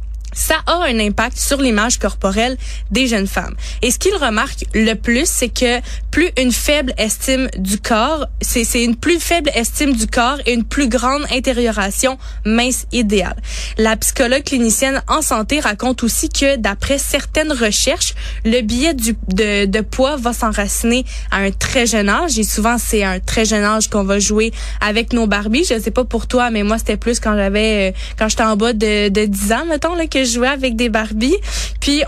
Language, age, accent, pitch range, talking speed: French, 20-39, Canadian, 215-265 Hz, 195 wpm